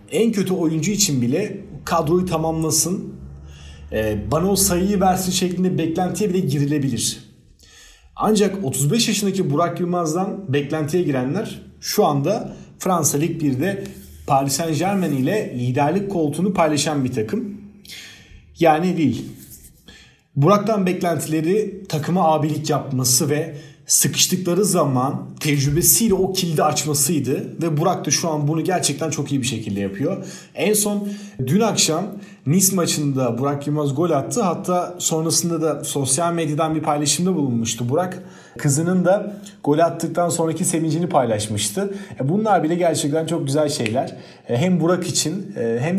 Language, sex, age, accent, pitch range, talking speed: Turkish, male, 40-59, native, 145-185 Hz, 130 wpm